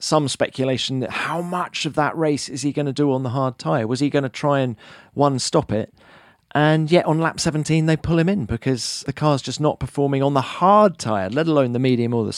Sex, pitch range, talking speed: male, 120-150 Hz, 245 wpm